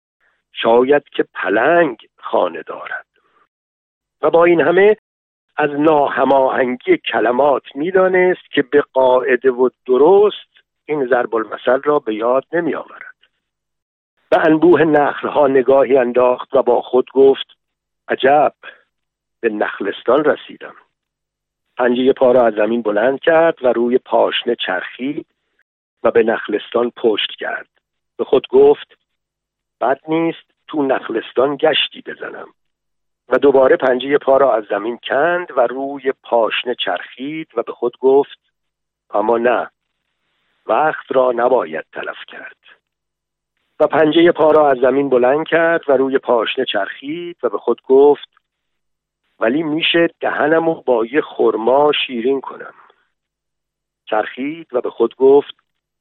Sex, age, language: male, 50-69, Persian